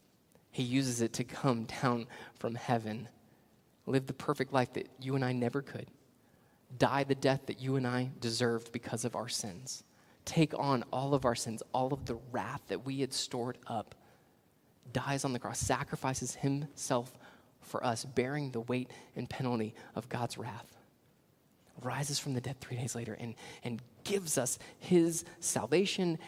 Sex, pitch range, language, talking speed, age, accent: male, 120-140 Hz, English, 170 wpm, 20-39, American